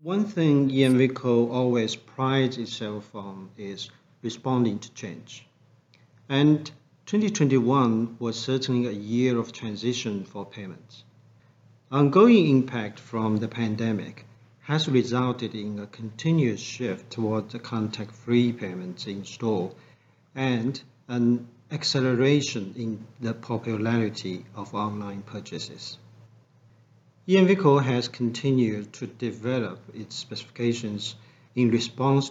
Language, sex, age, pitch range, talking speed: English, male, 50-69, 115-135 Hz, 105 wpm